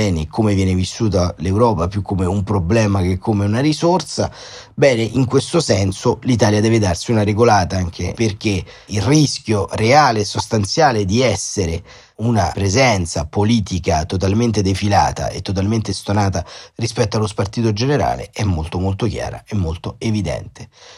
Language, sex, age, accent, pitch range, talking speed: Italian, male, 30-49, native, 90-110 Hz, 140 wpm